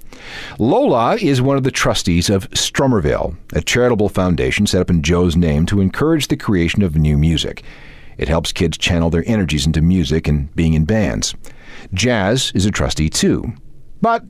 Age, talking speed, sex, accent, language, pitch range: 40-59, 170 wpm, male, American, English, 85-135 Hz